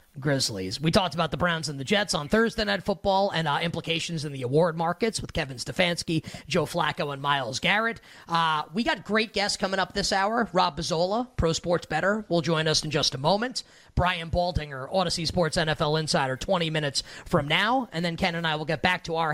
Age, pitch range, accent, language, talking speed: 30-49, 155-195 Hz, American, English, 215 wpm